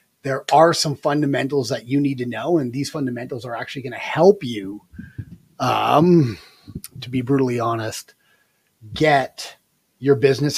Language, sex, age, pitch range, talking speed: English, male, 30-49, 135-170 Hz, 145 wpm